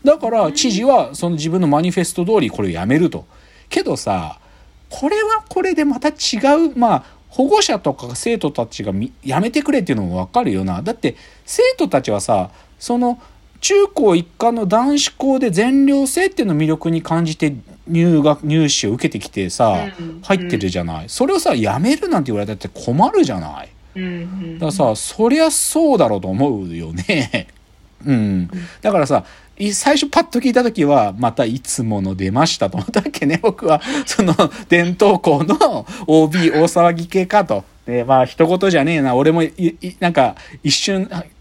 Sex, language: male, Japanese